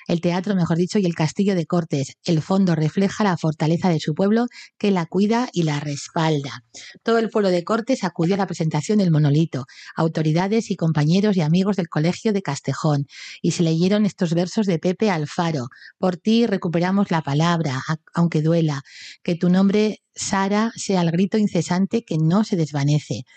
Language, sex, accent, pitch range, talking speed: Spanish, female, Spanish, 165-210 Hz, 180 wpm